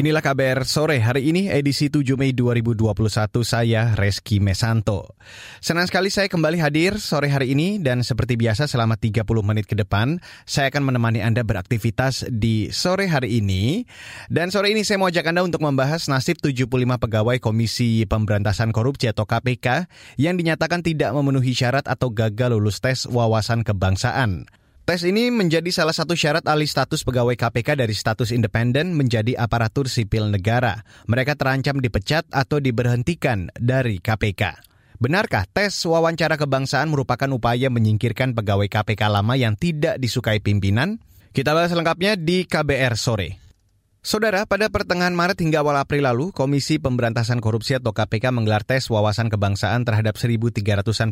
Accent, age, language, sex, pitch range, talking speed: native, 20-39, Indonesian, male, 110-150 Hz, 150 wpm